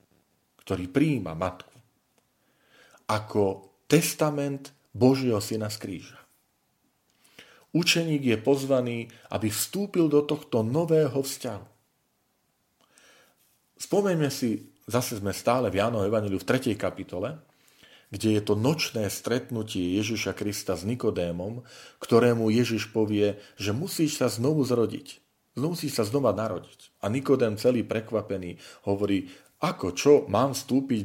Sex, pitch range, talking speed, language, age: male, 110-145 Hz, 115 wpm, Slovak, 40-59